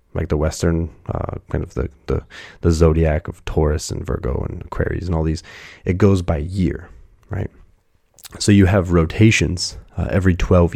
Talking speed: 175 wpm